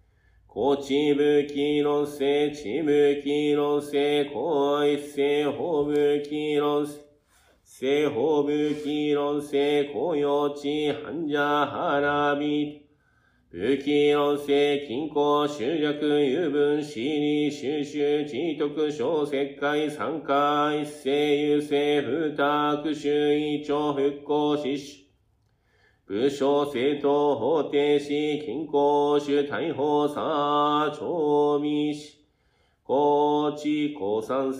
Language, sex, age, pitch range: Japanese, male, 40-59, 145-150 Hz